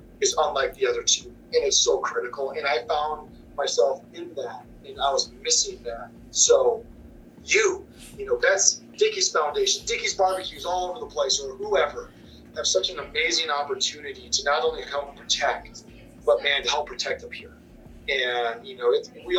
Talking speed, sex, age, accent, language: 175 wpm, male, 30-49, American, English